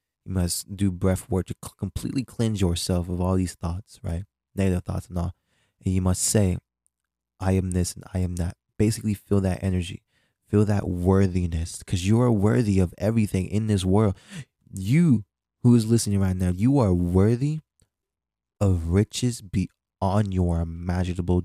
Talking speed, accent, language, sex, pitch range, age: 165 wpm, American, English, male, 90-105 Hz, 20-39